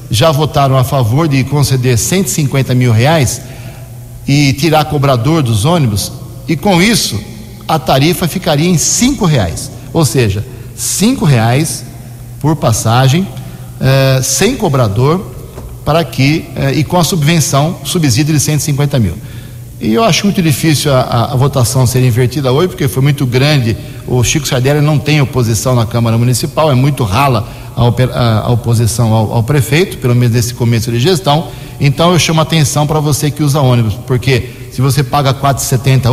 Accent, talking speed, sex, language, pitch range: Brazilian, 165 wpm, male, Portuguese, 125-155 Hz